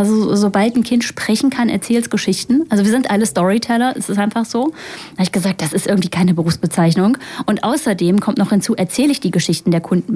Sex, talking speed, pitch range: female, 220 wpm, 200-245 Hz